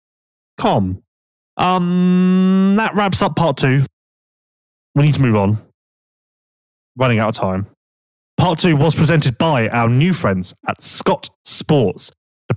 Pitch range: 125-170 Hz